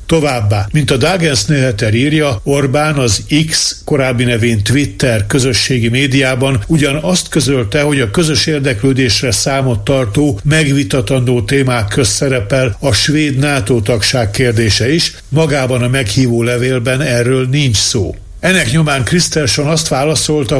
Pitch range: 120-145 Hz